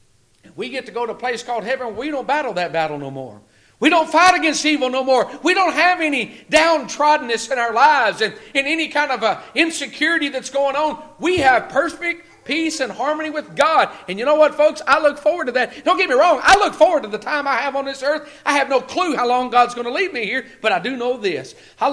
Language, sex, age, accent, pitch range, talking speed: English, male, 40-59, American, 245-305 Hz, 255 wpm